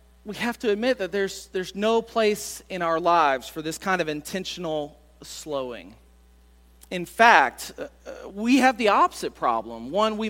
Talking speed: 165 wpm